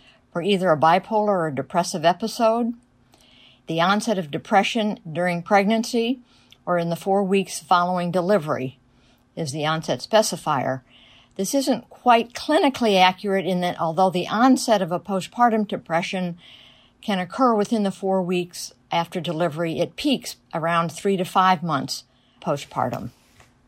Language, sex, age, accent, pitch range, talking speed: English, female, 50-69, American, 170-220 Hz, 140 wpm